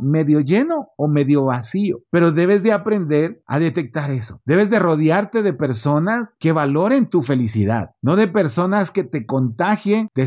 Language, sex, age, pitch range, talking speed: Spanish, male, 50-69, 140-190 Hz, 165 wpm